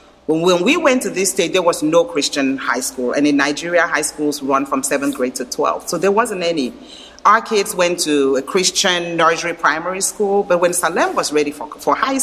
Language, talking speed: English, 215 wpm